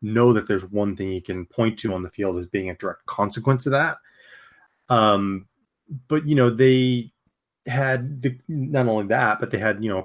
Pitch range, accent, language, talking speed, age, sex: 105-130 Hz, American, English, 205 wpm, 30-49, male